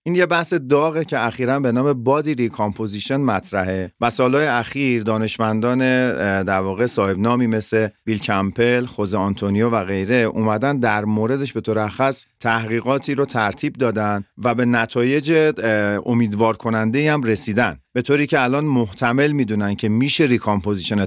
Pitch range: 105-130 Hz